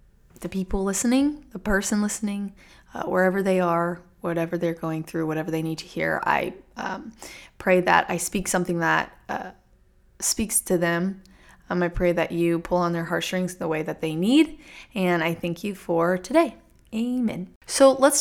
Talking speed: 180 wpm